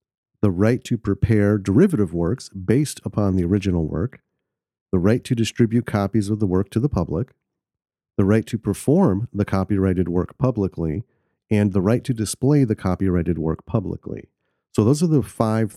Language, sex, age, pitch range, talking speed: English, male, 40-59, 90-115 Hz, 165 wpm